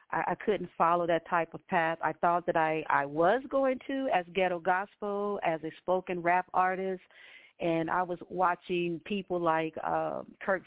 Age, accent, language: 40-59, American, English